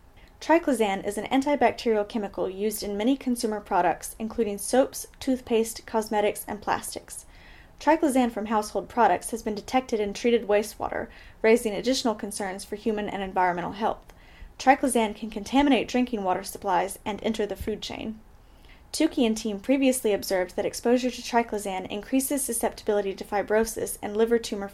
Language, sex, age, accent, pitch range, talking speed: English, female, 10-29, American, 205-245 Hz, 150 wpm